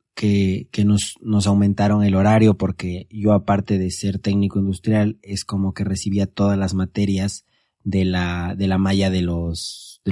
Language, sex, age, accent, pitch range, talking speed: Spanish, male, 30-49, Mexican, 95-110 Hz, 170 wpm